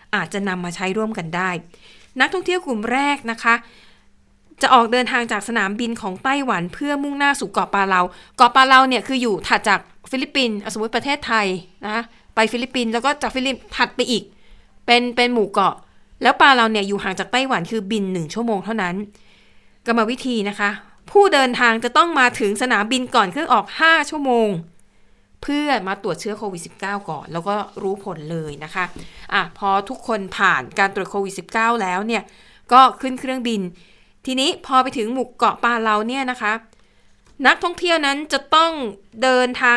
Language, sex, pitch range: Thai, female, 200-255 Hz